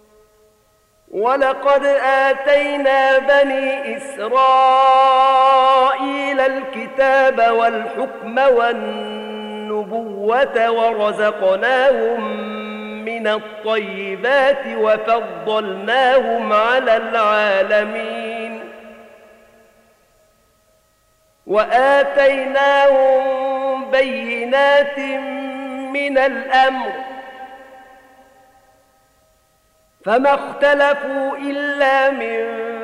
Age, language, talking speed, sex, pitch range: 50-69, Arabic, 40 wpm, male, 215-265 Hz